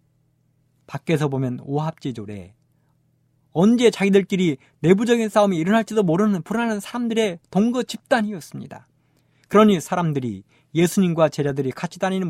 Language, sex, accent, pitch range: Korean, male, native, 140-195 Hz